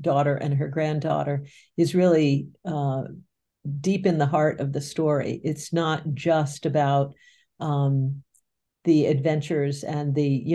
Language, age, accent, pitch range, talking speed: English, 50-69, American, 145-160 Hz, 135 wpm